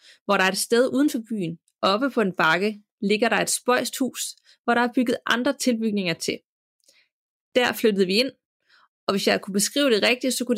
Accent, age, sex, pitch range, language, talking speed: native, 30-49, female, 205-250 Hz, Danish, 210 wpm